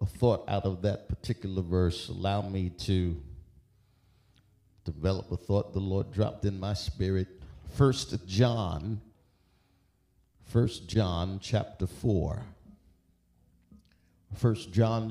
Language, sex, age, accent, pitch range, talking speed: English, male, 50-69, American, 100-125 Hz, 105 wpm